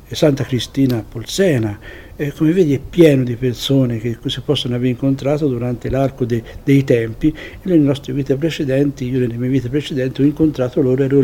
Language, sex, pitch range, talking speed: Italian, male, 115-135 Hz, 170 wpm